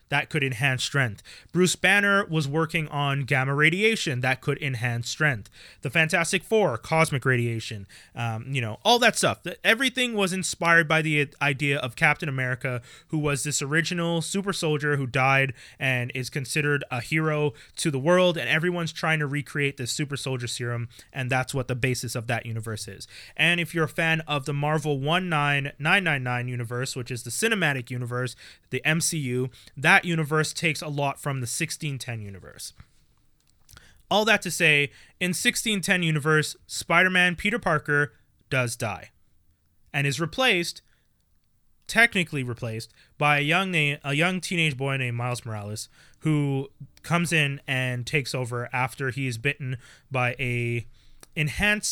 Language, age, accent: English, 20-39, American